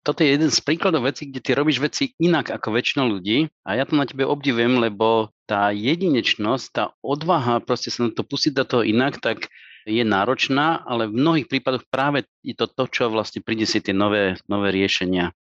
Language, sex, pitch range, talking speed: Slovak, male, 110-145 Hz, 200 wpm